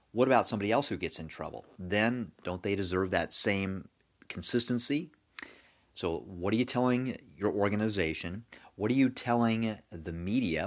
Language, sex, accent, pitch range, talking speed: English, male, American, 85-110 Hz, 155 wpm